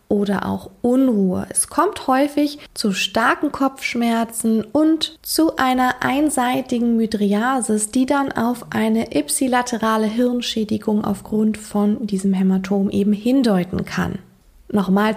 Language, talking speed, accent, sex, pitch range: German, 110 wpm, German, female, 200-265 Hz